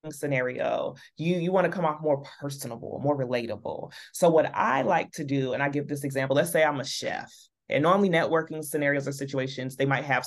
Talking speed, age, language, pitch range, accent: 210 wpm, 30-49, English, 140-175 Hz, American